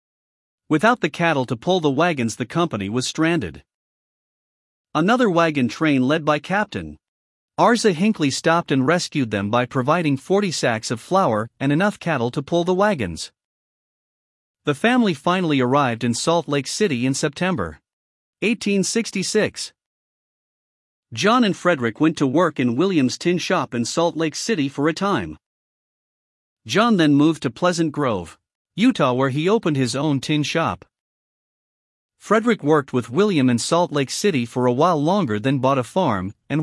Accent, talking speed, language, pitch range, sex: American, 155 wpm, English, 125-185 Hz, male